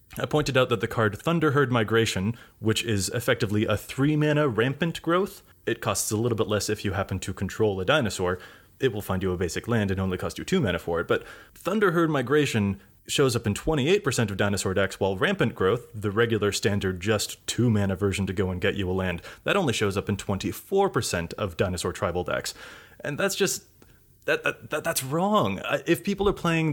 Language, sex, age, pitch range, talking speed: English, male, 20-39, 100-130 Hz, 200 wpm